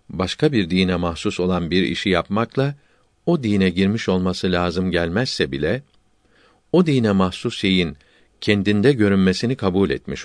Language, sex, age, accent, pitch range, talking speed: Turkish, male, 50-69, native, 90-115 Hz, 135 wpm